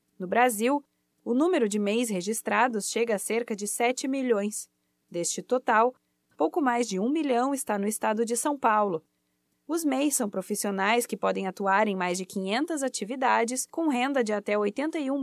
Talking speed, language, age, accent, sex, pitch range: 170 wpm, Portuguese, 20-39, Brazilian, female, 205-260 Hz